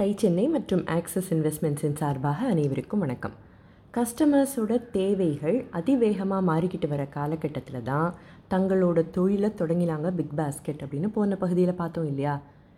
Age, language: 20-39, Tamil